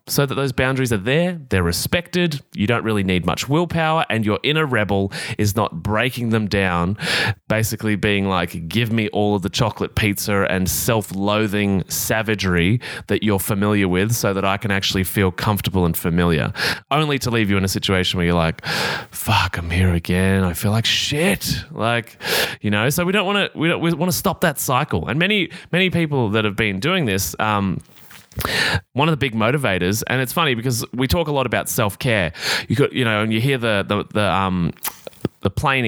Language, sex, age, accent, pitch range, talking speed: English, male, 20-39, Australian, 95-130 Hz, 195 wpm